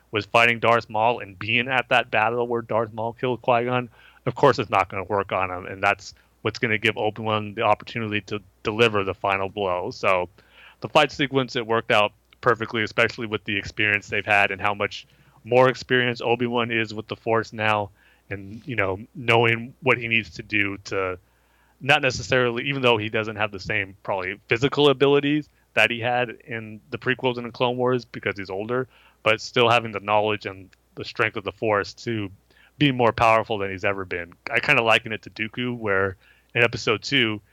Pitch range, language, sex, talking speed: 100-120 Hz, English, male, 205 wpm